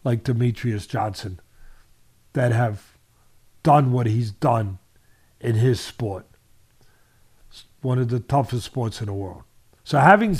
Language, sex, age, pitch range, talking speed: English, male, 50-69, 115-150 Hz, 125 wpm